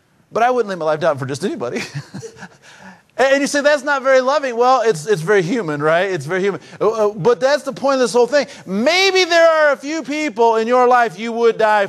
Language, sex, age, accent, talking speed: English, male, 50-69, American, 230 wpm